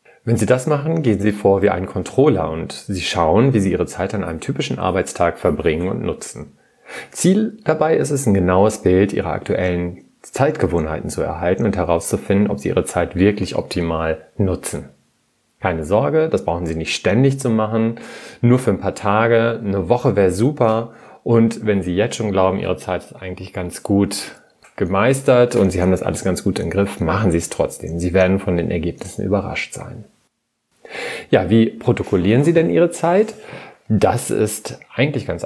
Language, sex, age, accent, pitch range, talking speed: German, male, 30-49, German, 90-115 Hz, 180 wpm